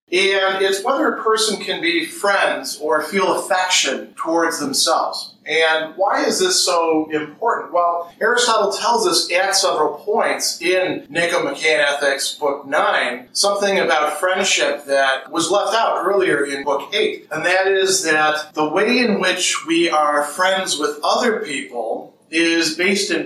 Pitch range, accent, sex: 150-200 Hz, American, male